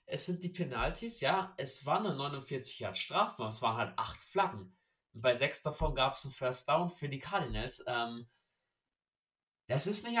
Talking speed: 180 wpm